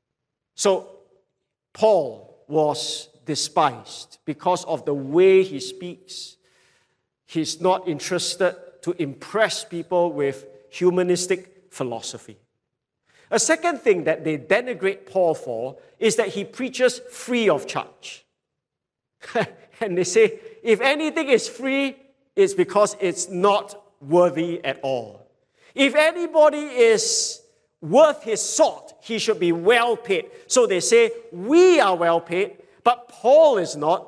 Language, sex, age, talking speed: English, male, 50-69, 125 wpm